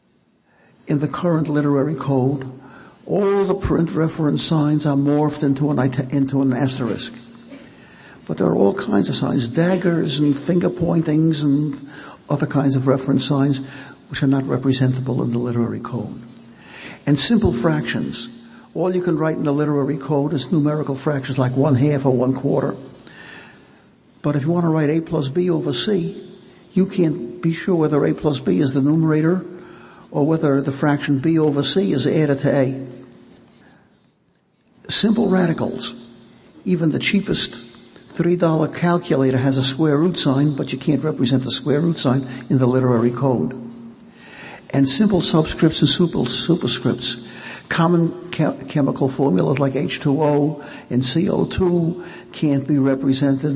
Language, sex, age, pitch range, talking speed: English, male, 60-79, 135-165 Hz, 150 wpm